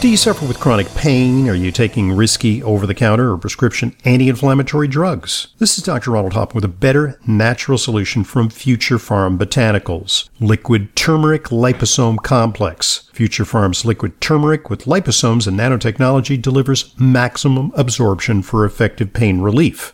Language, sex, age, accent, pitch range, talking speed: English, male, 50-69, American, 110-140 Hz, 145 wpm